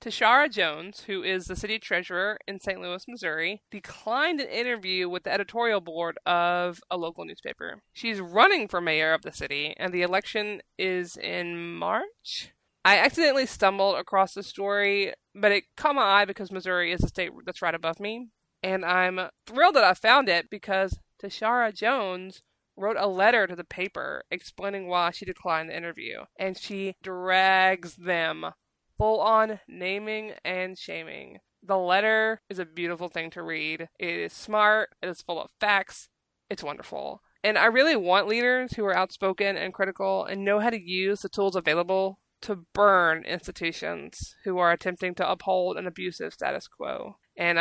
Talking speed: 170 wpm